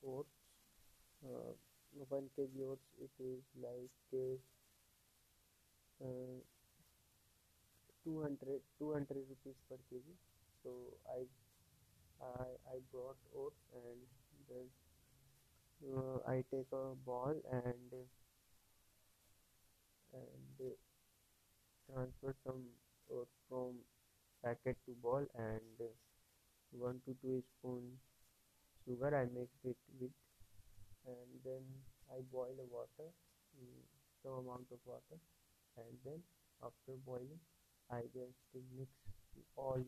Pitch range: 105-130 Hz